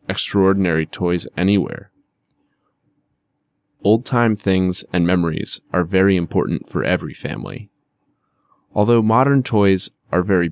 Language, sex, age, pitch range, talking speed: Russian, male, 20-39, 90-110 Hz, 110 wpm